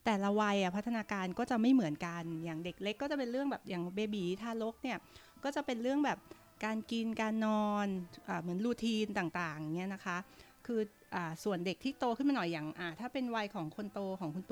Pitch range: 185-235 Hz